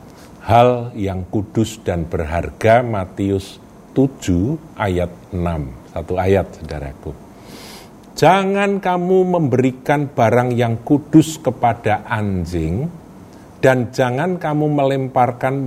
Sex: male